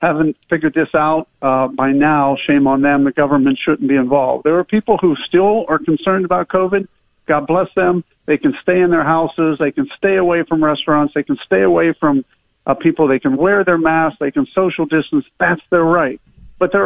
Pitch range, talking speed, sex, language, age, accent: 145-185 Hz, 215 wpm, male, English, 50-69, American